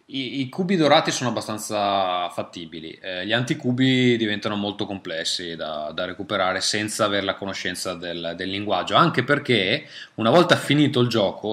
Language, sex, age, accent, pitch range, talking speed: Italian, male, 20-39, native, 95-125 Hz, 155 wpm